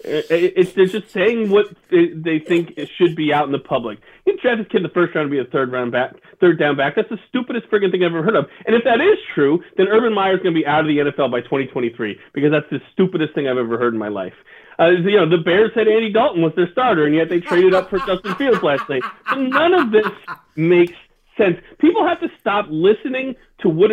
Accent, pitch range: American, 175-245 Hz